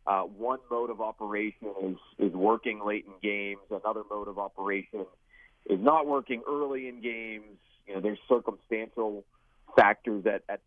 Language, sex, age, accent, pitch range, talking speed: English, male, 30-49, American, 100-115 Hz, 155 wpm